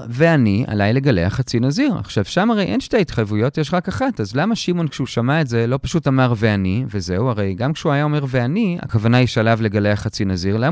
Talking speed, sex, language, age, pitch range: 220 wpm, male, Hebrew, 40-59, 115-180 Hz